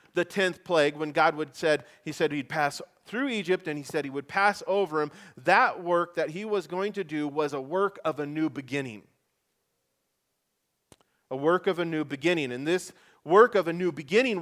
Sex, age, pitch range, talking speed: male, 30-49, 135-190 Hz, 205 wpm